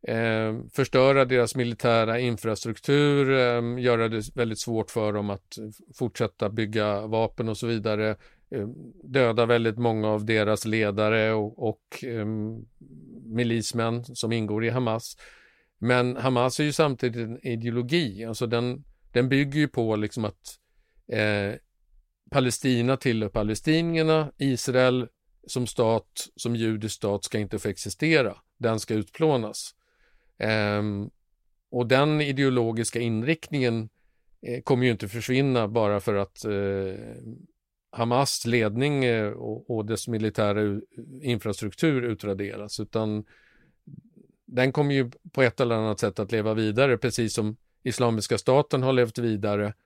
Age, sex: 50-69, male